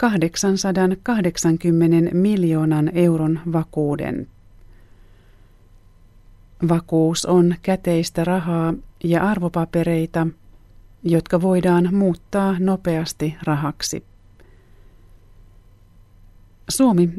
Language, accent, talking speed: Finnish, native, 55 wpm